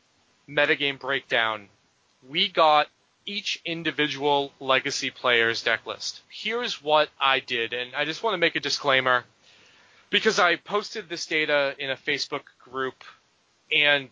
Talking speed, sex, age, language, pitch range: 130 wpm, male, 30-49, English, 130-170 Hz